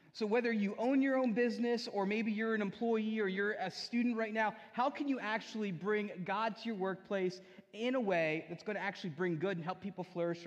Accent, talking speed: American, 230 wpm